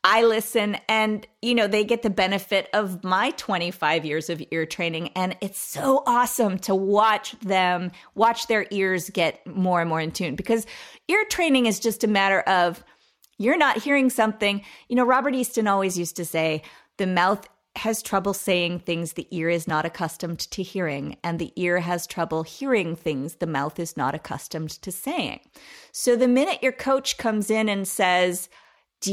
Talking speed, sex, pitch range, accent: 185 wpm, female, 175-225 Hz, American